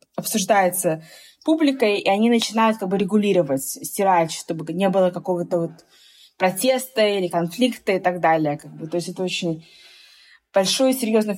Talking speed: 155 wpm